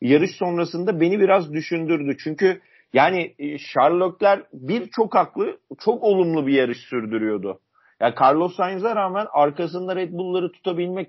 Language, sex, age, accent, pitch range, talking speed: Turkish, male, 50-69, native, 140-190 Hz, 125 wpm